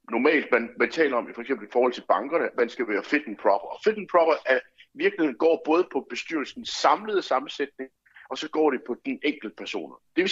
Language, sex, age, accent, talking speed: Danish, male, 60-79, native, 235 wpm